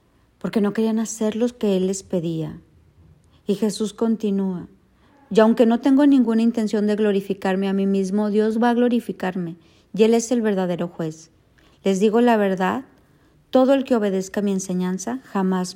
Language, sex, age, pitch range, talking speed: Spanish, female, 40-59, 190-230 Hz, 170 wpm